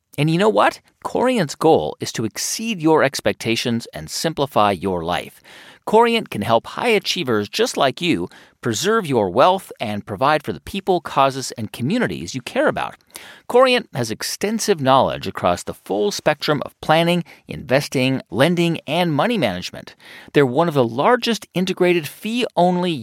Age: 40-59